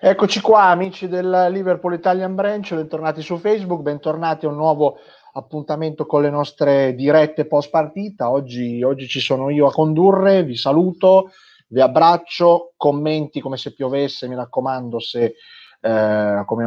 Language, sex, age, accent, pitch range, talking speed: Italian, male, 30-49, native, 120-160 Hz, 150 wpm